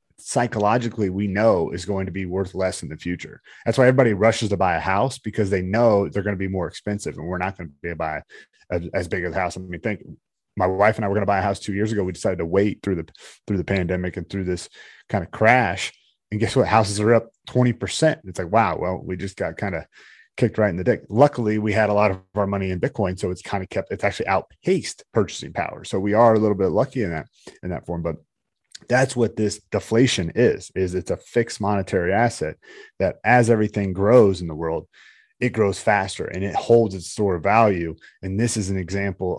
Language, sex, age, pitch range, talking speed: English, male, 30-49, 90-110 Hz, 245 wpm